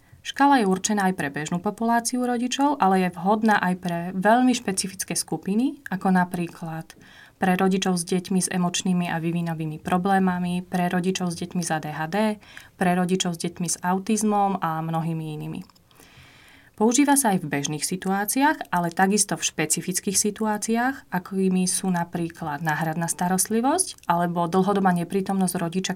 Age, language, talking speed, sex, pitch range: 30-49, Slovak, 145 wpm, female, 175-205 Hz